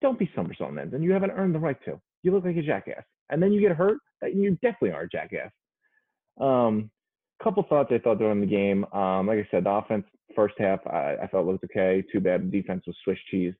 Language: English